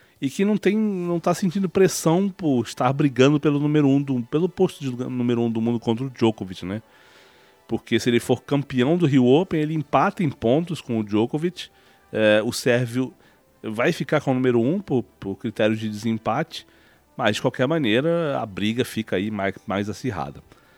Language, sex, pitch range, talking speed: Portuguese, male, 115-155 Hz, 195 wpm